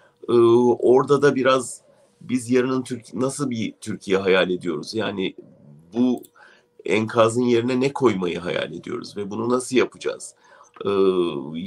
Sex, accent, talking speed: male, Turkish, 130 wpm